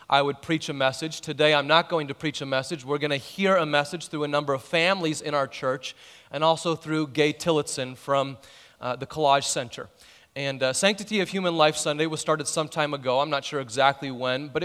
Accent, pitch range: American, 145-175 Hz